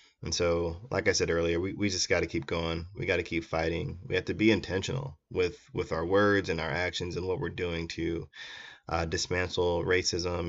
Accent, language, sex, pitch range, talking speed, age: American, English, male, 85-110 Hz, 215 wpm, 20-39